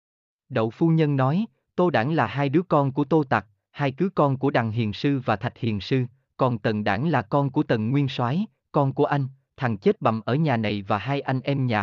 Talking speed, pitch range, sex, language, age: 240 wpm, 110-155 Hz, male, Vietnamese, 20-39